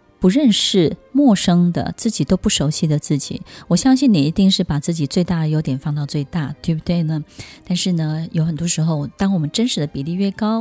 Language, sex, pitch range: Chinese, female, 155-200 Hz